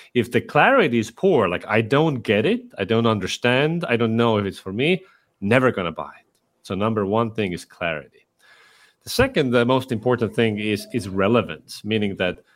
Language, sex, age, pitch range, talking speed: English, male, 40-59, 105-130 Hz, 200 wpm